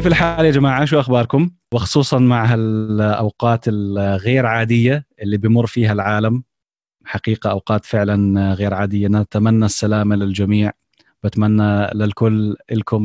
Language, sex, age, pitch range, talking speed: Arabic, male, 20-39, 105-120 Hz, 120 wpm